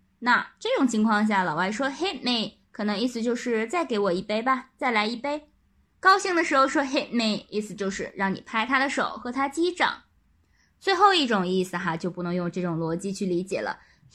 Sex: female